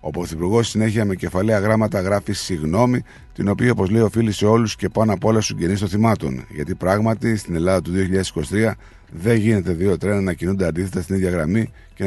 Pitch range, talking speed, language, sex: 95-115 Hz, 190 wpm, Greek, male